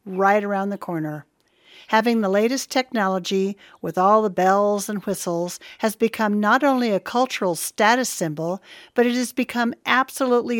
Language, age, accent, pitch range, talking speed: English, 50-69, American, 180-230 Hz, 155 wpm